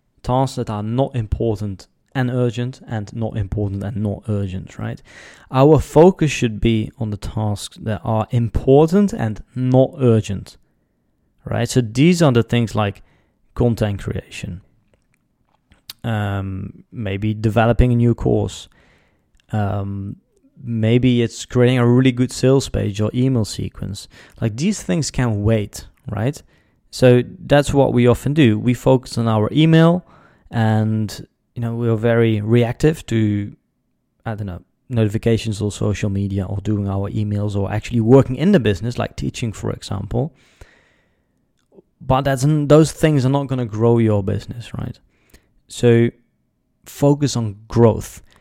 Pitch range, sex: 105-125 Hz, male